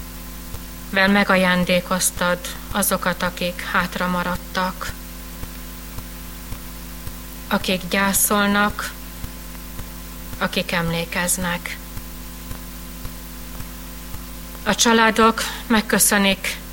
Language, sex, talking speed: Hungarian, female, 45 wpm